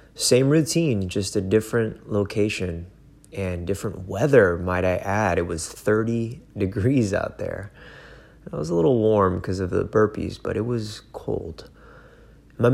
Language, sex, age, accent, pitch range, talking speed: English, male, 20-39, American, 100-125 Hz, 150 wpm